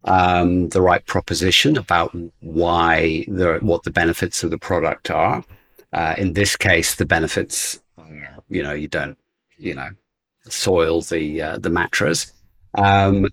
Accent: British